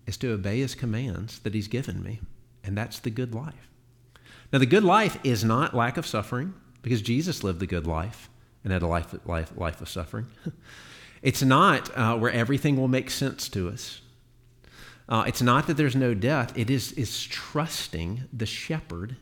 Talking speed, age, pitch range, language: 185 wpm, 50-69, 105-130 Hz, English